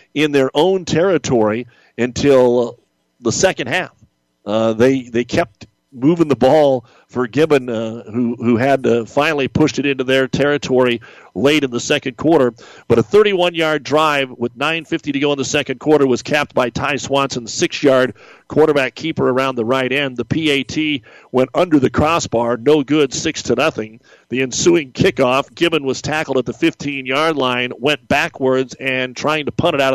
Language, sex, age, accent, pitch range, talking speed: English, male, 50-69, American, 125-155 Hz, 170 wpm